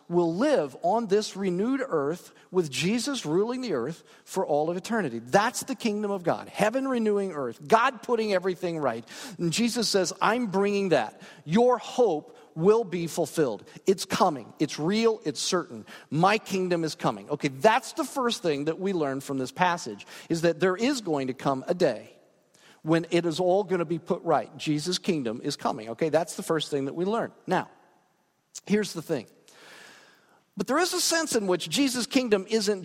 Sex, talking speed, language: male, 185 wpm, English